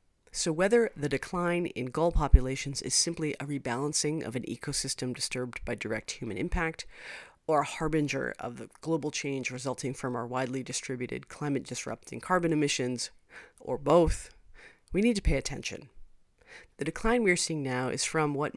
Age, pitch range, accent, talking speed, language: 40-59, 130-165 Hz, American, 160 wpm, English